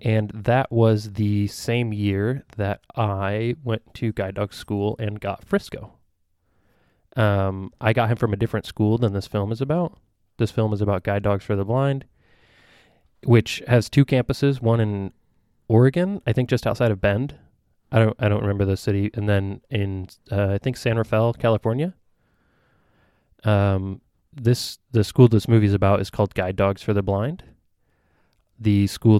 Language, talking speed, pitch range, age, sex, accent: English, 175 wpm, 100-120 Hz, 20-39, male, American